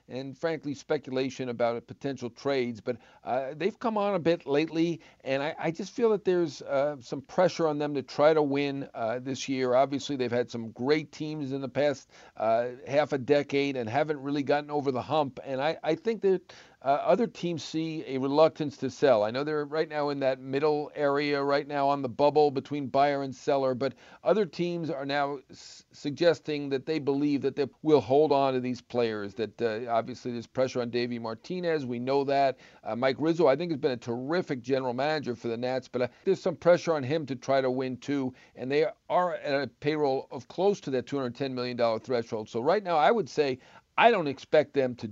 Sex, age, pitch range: male, 50-69, 125-150 Hz